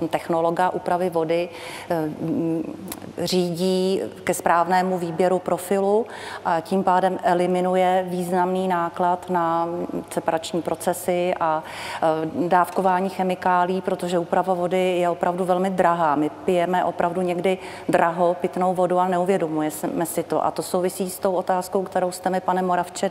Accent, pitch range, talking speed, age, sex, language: native, 175-190 Hz, 125 wpm, 40-59, female, Czech